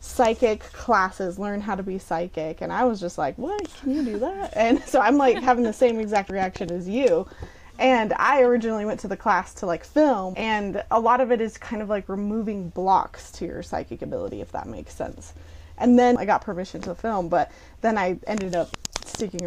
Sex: female